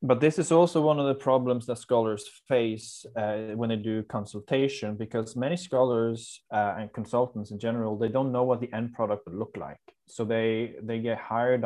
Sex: male